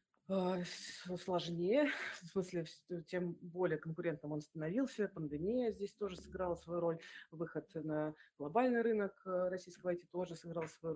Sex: female